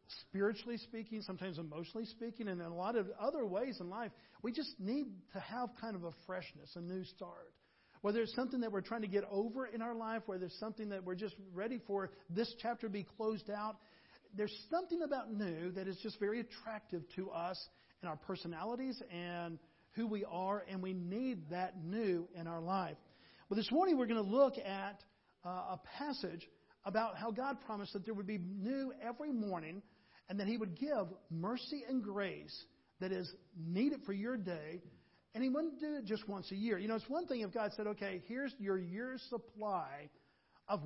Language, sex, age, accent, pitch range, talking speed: English, male, 50-69, American, 185-235 Hz, 200 wpm